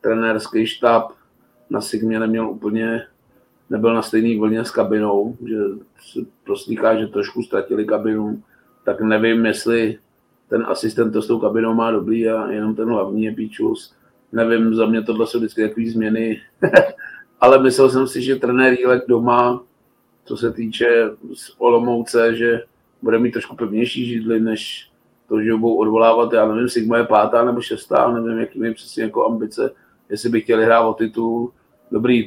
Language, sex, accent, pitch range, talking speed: Czech, male, native, 115-125 Hz, 165 wpm